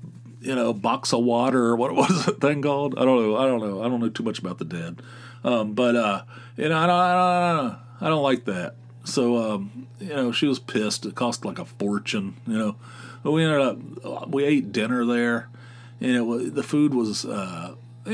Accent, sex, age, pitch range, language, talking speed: American, male, 40-59, 110-140 Hz, English, 225 wpm